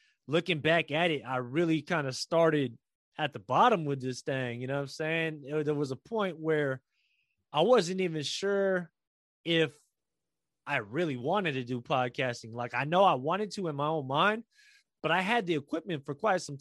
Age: 20-39